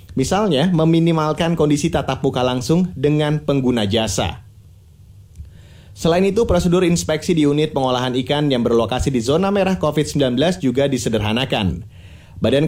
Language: Indonesian